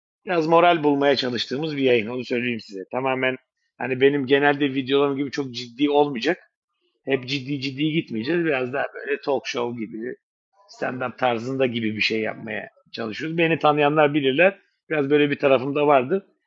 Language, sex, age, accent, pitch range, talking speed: Turkish, male, 50-69, native, 135-170 Hz, 155 wpm